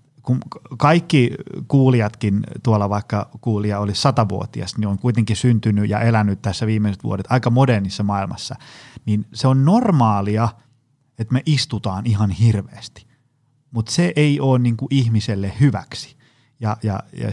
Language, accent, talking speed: Finnish, native, 135 wpm